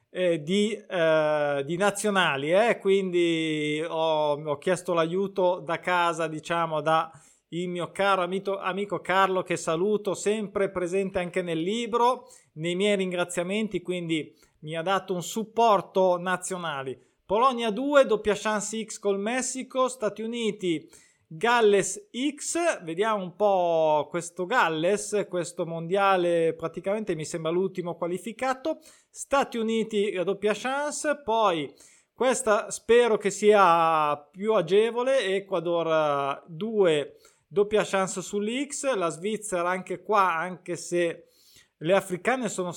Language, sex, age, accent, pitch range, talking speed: Italian, male, 20-39, native, 170-210 Hz, 120 wpm